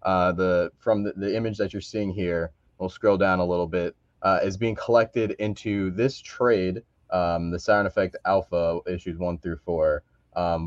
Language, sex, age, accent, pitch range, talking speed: English, male, 20-39, American, 85-100 Hz, 185 wpm